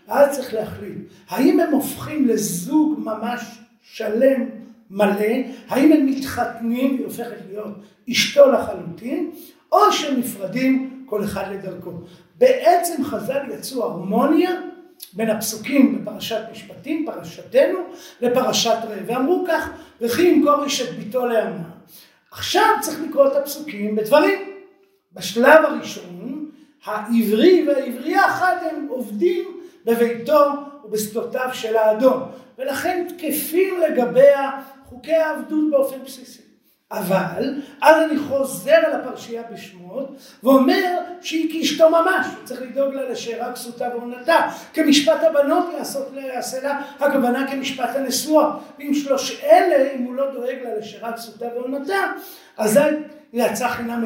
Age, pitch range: 50-69, 230-305 Hz